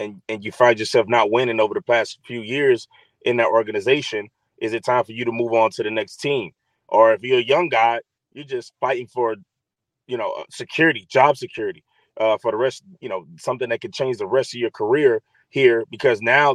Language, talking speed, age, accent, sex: English, 220 wpm, 30-49, American, male